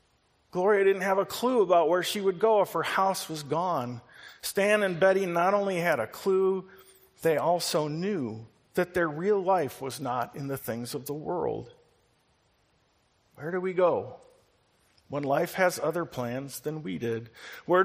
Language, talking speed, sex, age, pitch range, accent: English, 170 wpm, male, 50-69, 150-195 Hz, American